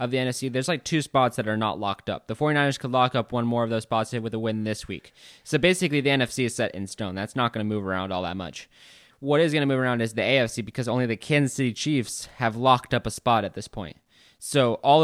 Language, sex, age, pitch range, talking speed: English, male, 20-39, 110-130 Hz, 275 wpm